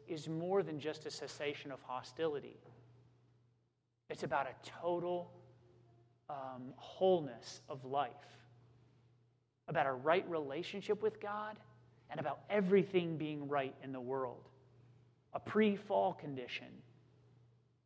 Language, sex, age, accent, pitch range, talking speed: English, male, 30-49, American, 125-160 Hz, 110 wpm